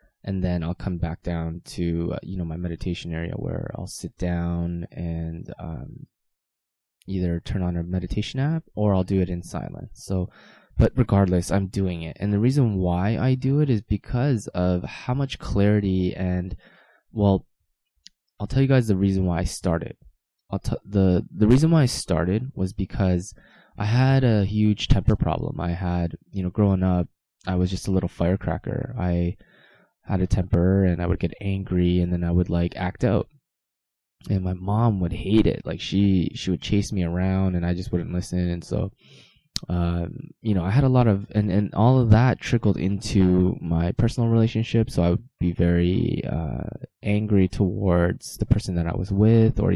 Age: 20-39